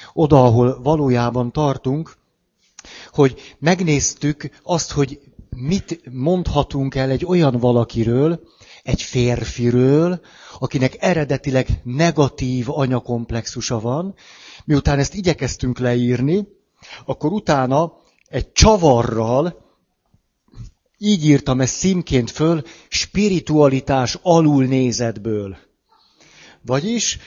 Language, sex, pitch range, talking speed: Hungarian, male, 125-160 Hz, 80 wpm